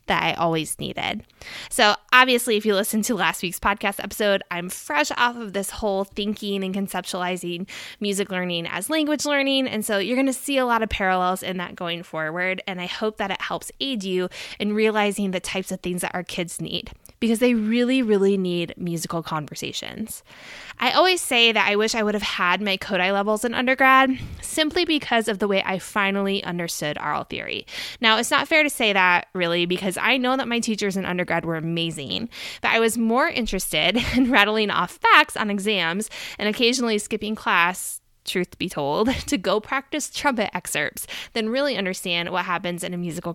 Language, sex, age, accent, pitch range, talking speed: English, female, 20-39, American, 185-245 Hz, 195 wpm